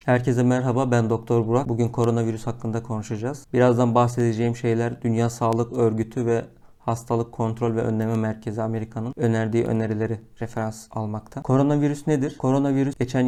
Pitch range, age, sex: 115-125 Hz, 40-59, male